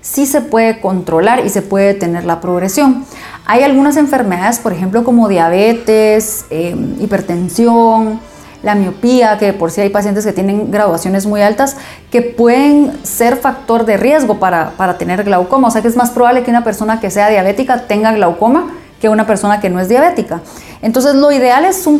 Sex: female